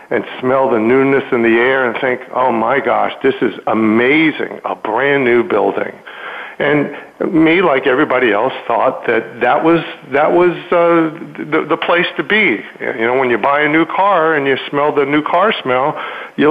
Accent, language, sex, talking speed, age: American, English, male, 185 wpm, 50-69